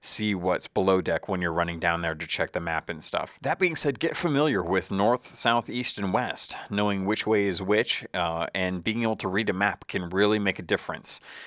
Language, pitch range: English, 95-115 Hz